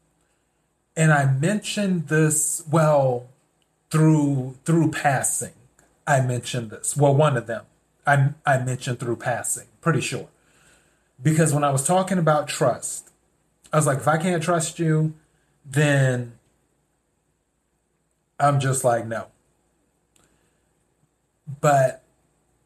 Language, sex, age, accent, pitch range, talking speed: English, male, 30-49, American, 130-160 Hz, 115 wpm